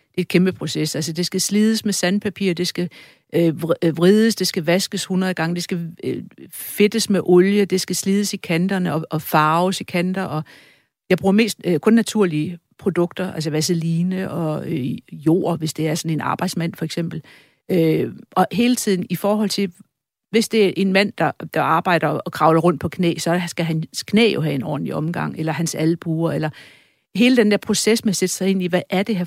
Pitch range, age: 165-190 Hz, 60-79